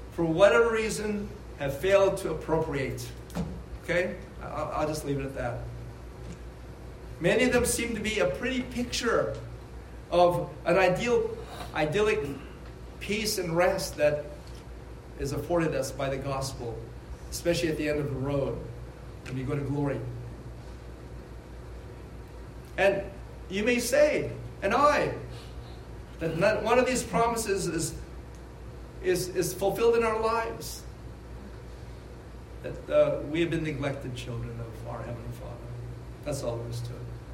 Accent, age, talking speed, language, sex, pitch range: American, 50-69, 135 wpm, English, male, 120-175 Hz